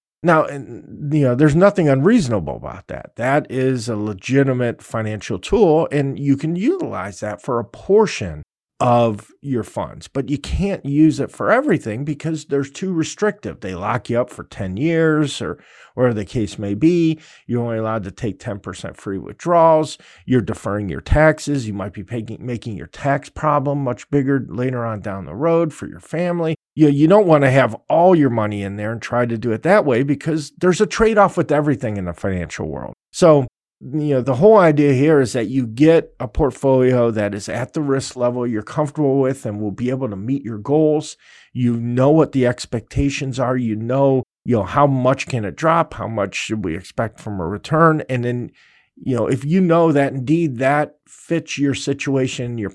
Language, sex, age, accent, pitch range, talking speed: English, male, 40-59, American, 115-150 Hz, 195 wpm